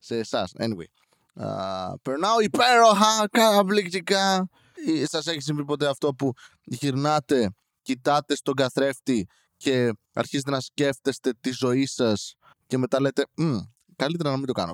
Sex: male